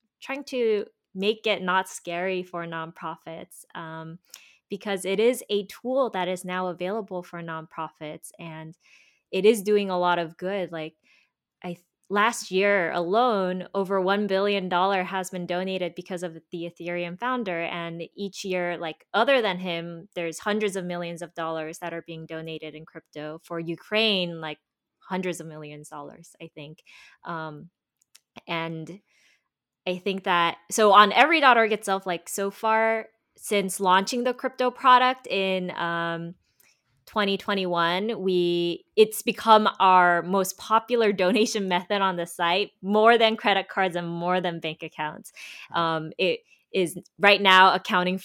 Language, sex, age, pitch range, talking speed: English, female, 20-39, 170-210 Hz, 150 wpm